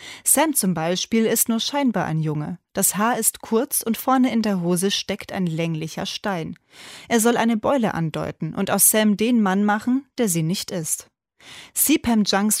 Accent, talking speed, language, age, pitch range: German, 180 wpm, German, 30-49, 180-225 Hz